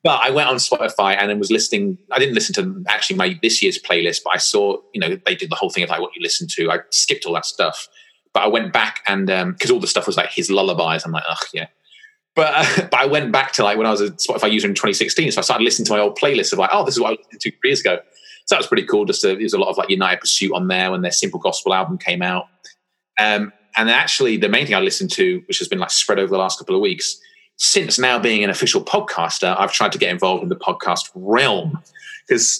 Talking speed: 280 wpm